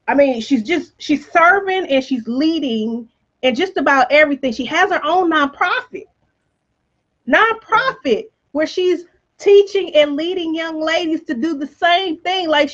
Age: 30-49